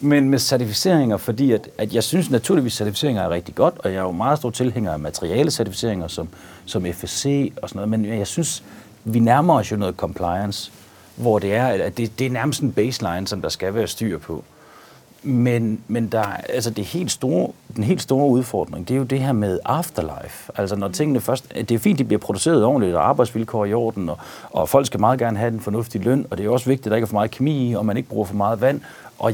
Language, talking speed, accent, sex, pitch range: Danish, 240 wpm, native, male, 105-130 Hz